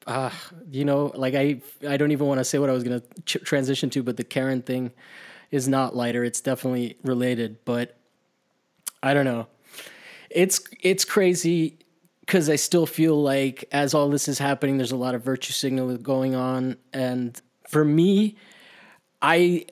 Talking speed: 175 wpm